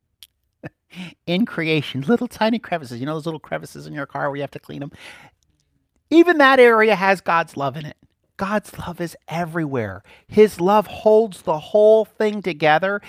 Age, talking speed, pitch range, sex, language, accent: 50-69, 175 wpm, 140-195 Hz, male, English, American